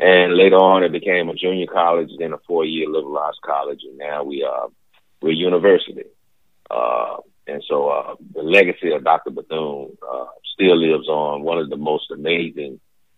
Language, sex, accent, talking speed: English, male, American, 180 wpm